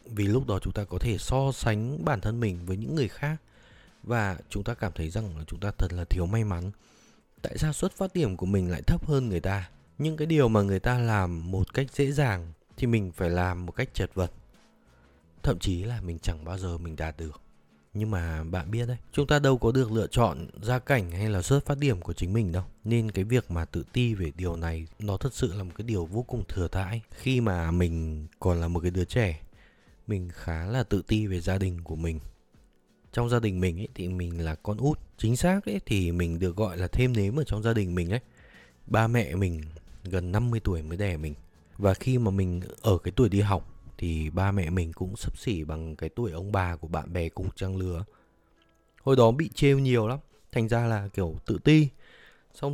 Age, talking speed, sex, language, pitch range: 20-39, 235 wpm, male, Vietnamese, 90-120 Hz